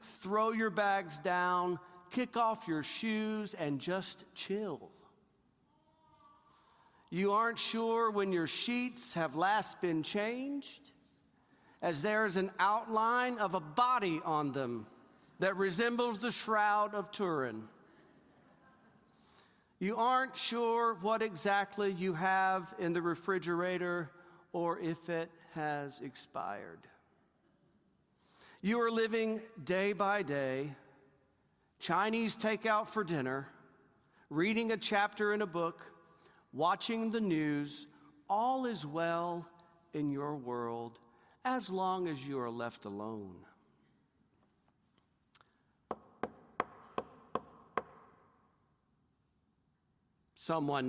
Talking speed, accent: 100 wpm, American